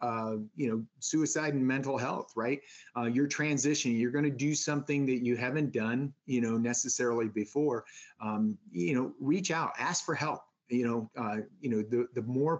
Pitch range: 120-140 Hz